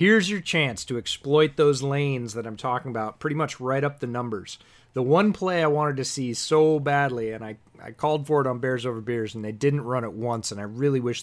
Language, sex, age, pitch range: English, male, 30-49, 110-135 Hz